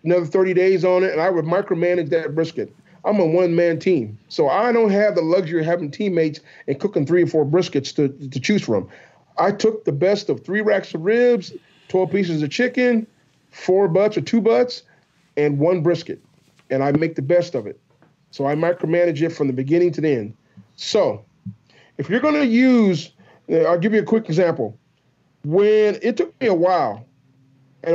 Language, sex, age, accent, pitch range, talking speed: English, male, 40-59, American, 140-180 Hz, 195 wpm